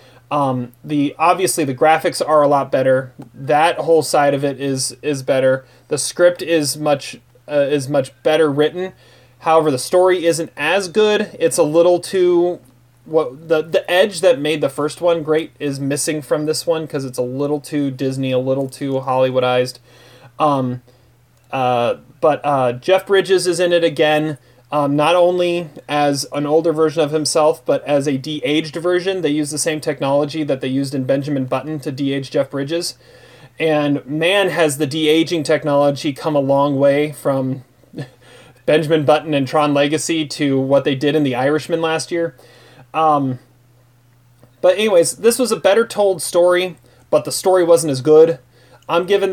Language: English